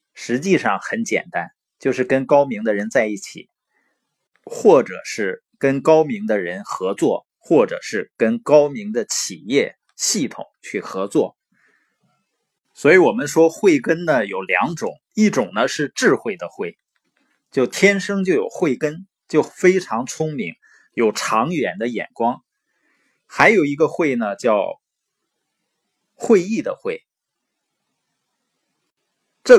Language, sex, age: Chinese, male, 20-39